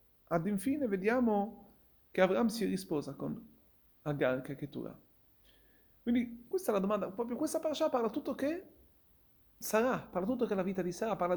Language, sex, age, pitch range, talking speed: Italian, male, 40-59, 150-235 Hz, 175 wpm